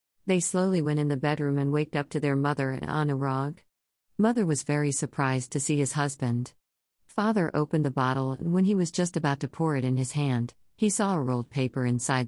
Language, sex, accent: English, female, American